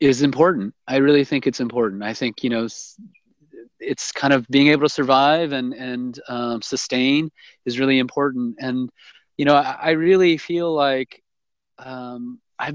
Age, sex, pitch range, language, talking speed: 30-49, male, 130-155 Hz, English, 170 wpm